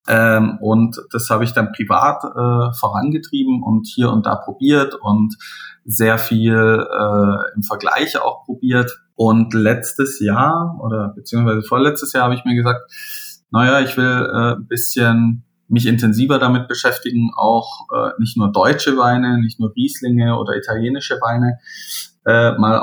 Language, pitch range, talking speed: German, 110-135 Hz, 145 wpm